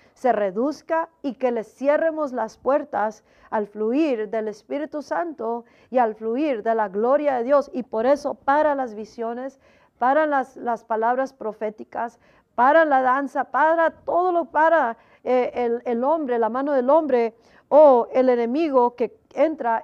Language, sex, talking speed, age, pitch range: Spanish, female, 160 wpm, 50-69, 225-280 Hz